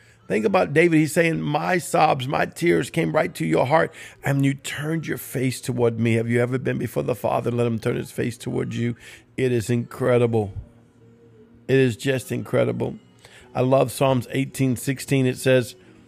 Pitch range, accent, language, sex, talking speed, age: 105-130 Hz, American, English, male, 185 wpm, 50-69